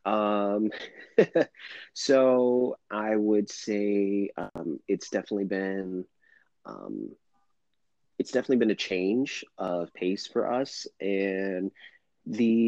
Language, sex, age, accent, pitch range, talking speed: English, male, 30-49, American, 95-110 Hz, 100 wpm